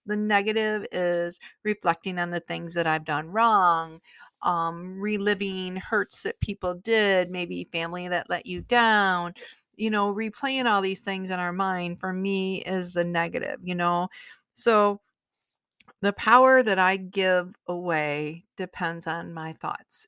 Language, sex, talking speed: English, female, 150 wpm